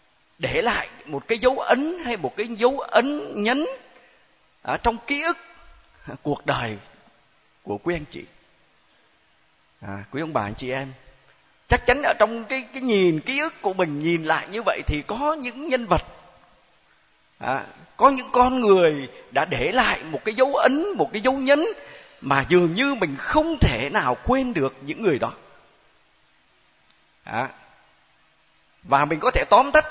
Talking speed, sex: 175 wpm, male